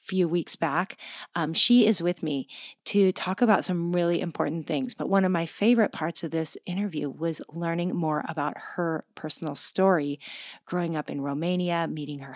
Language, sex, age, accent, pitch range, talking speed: English, female, 30-49, American, 155-185 Hz, 180 wpm